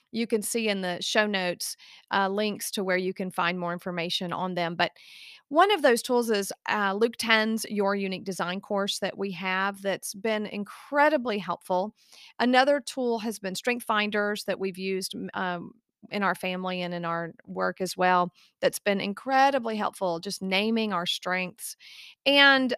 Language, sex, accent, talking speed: English, female, American, 175 wpm